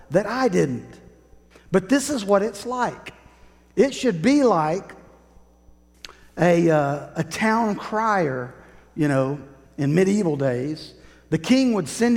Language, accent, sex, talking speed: English, American, male, 135 wpm